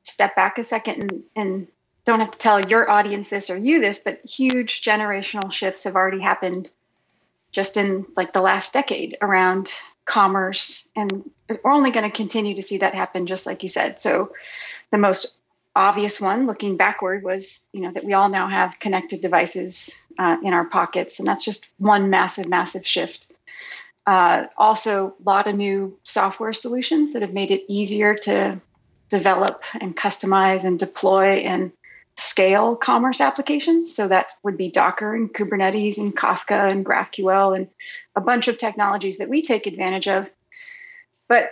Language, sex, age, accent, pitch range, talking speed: English, female, 30-49, American, 195-235 Hz, 170 wpm